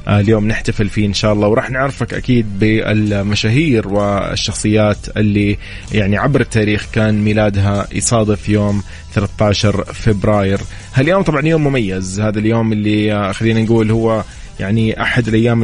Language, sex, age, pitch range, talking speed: English, male, 20-39, 100-115 Hz, 130 wpm